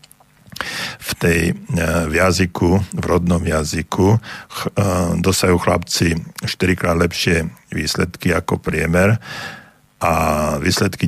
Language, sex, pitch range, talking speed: Slovak, male, 80-95 Hz, 90 wpm